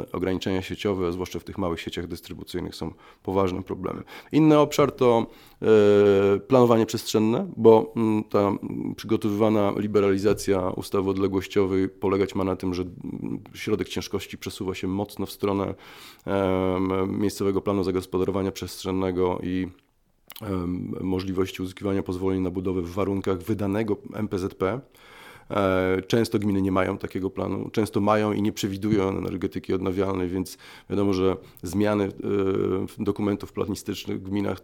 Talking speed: 120 wpm